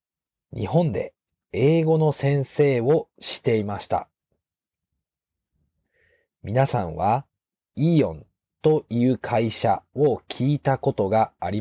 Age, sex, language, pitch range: 40-59, male, Japanese, 105-155 Hz